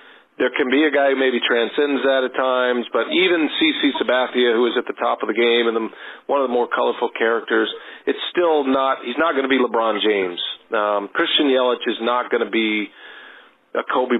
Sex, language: male, English